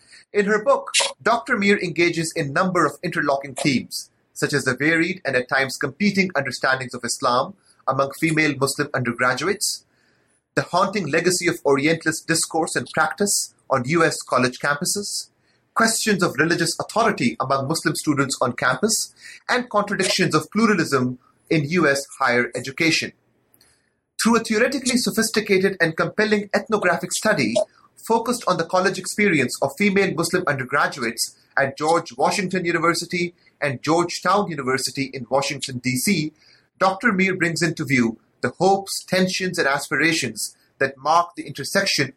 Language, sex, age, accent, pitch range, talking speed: English, male, 30-49, Indian, 140-195 Hz, 140 wpm